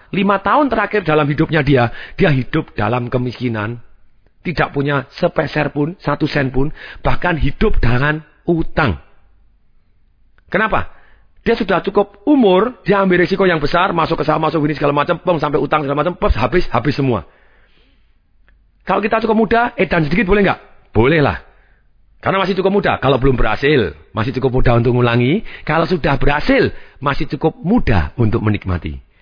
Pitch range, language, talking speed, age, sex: 115-160 Hz, Indonesian, 155 wpm, 40-59, male